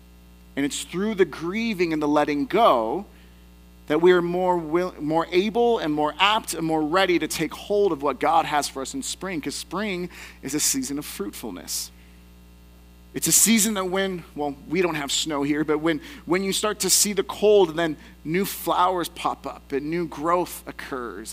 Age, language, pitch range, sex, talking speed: 30-49, English, 140-180 Hz, male, 195 wpm